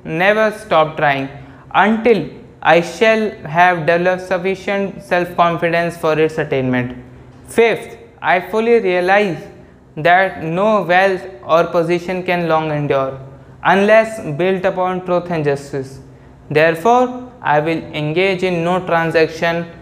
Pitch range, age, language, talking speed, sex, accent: 150-185 Hz, 20-39, English, 115 wpm, male, Indian